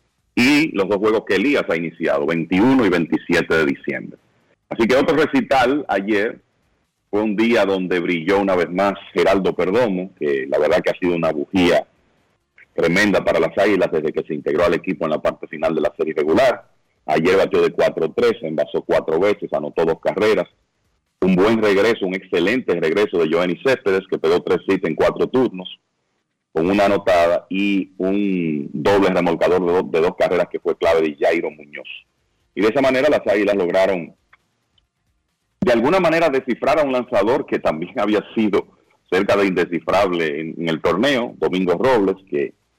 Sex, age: male, 40-59